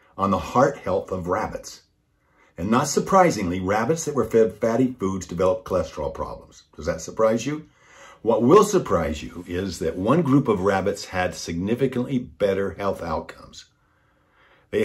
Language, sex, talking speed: English, male, 155 wpm